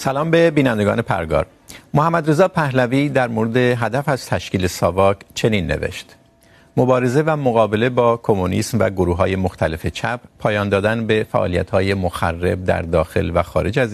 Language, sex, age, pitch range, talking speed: Urdu, male, 50-69, 95-130 Hz, 155 wpm